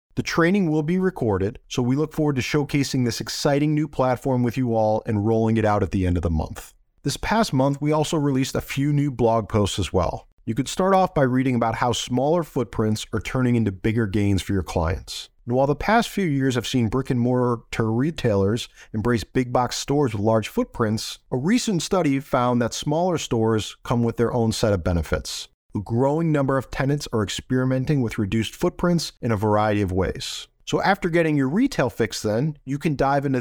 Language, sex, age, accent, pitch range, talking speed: English, male, 40-59, American, 110-145 Hz, 210 wpm